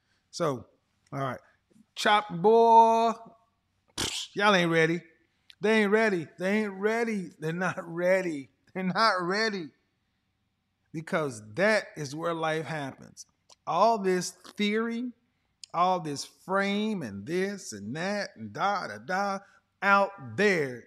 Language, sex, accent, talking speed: English, male, American, 120 wpm